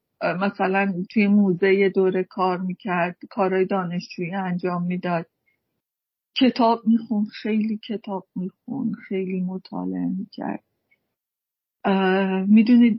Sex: female